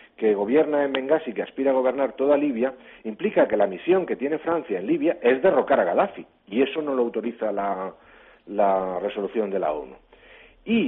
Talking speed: 195 wpm